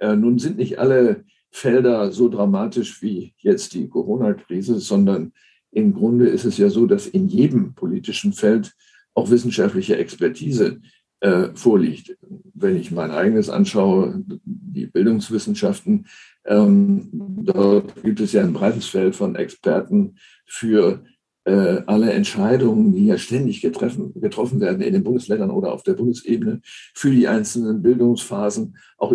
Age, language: 60-79, German